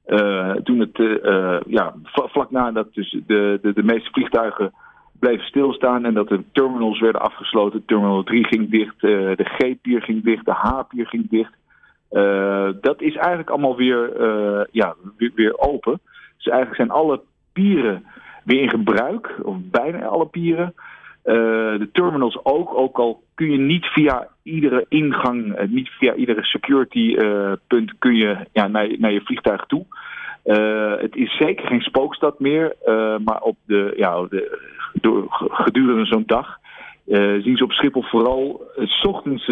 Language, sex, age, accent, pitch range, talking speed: Dutch, male, 50-69, Dutch, 105-130 Hz, 165 wpm